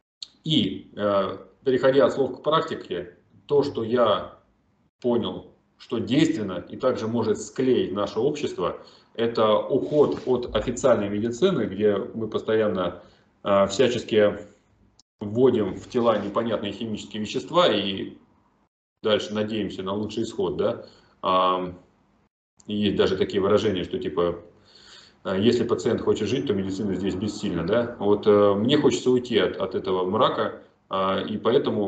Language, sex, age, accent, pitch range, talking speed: Russian, male, 30-49, native, 95-120 Hz, 120 wpm